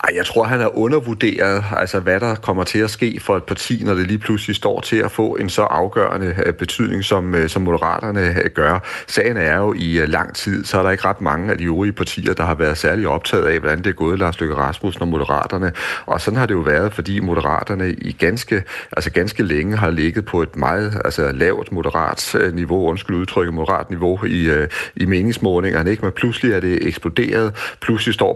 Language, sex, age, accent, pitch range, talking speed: Danish, male, 40-59, native, 85-105 Hz, 205 wpm